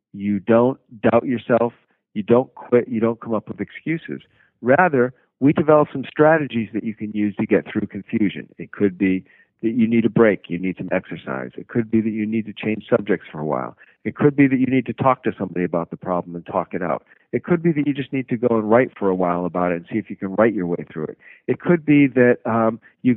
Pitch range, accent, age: 100-130 Hz, American, 50-69